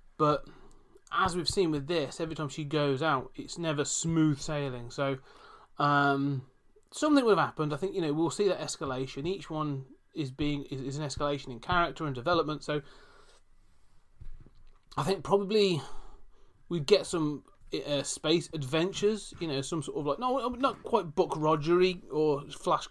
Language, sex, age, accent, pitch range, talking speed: English, male, 30-49, British, 135-170 Hz, 170 wpm